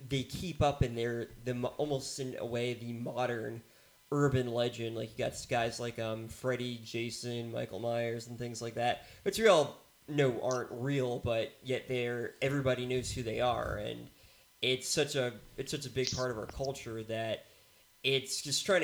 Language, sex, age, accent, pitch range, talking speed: English, male, 20-39, American, 115-130 Hz, 185 wpm